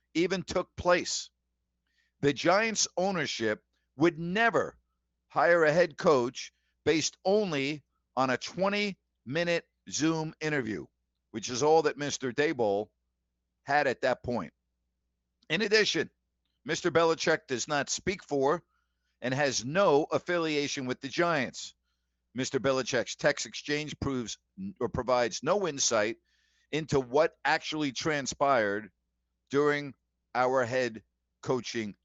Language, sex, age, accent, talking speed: English, male, 50-69, American, 115 wpm